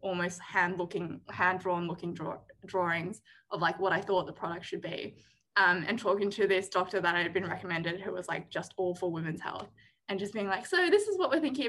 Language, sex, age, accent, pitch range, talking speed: English, female, 10-29, Australian, 175-205 Hz, 220 wpm